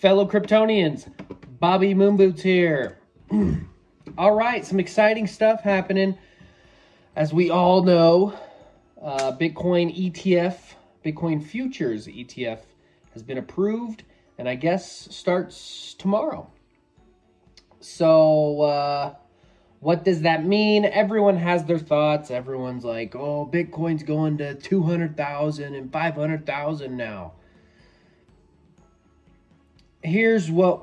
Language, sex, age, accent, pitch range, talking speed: English, male, 20-39, American, 140-195 Hz, 100 wpm